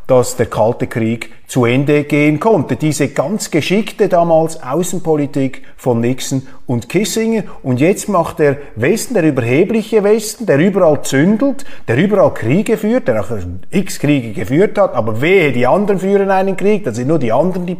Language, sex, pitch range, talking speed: German, male, 130-185 Hz, 170 wpm